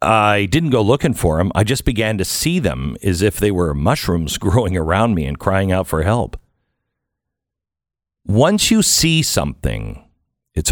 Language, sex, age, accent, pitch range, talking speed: English, male, 50-69, American, 85-110 Hz, 170 wpm